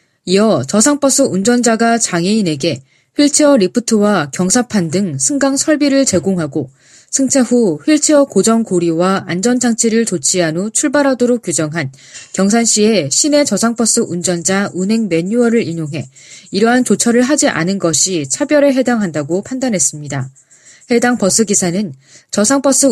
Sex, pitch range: female, 170-245 Hz